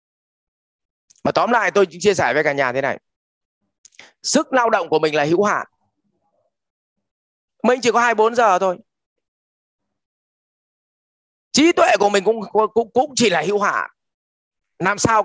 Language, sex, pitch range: English, male, 160-230 Hz